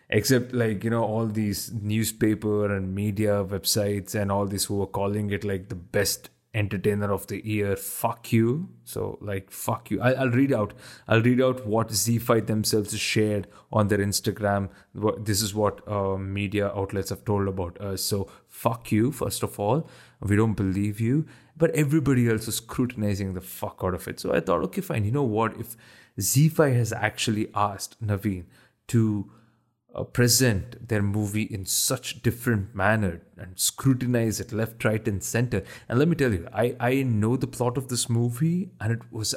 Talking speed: 185 wpm